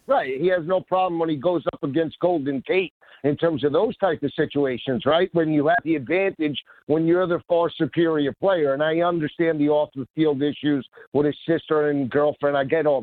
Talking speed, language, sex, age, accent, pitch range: 205 wpm, English, male, 50-69, American, 160-200 Hz